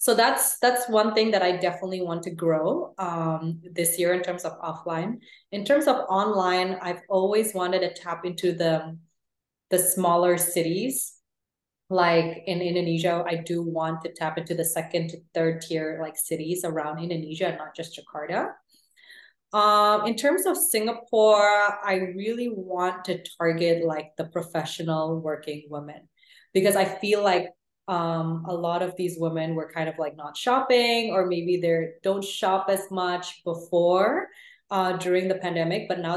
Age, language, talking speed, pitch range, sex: 20-39, English, 165 wpm, 165-190 Hz, female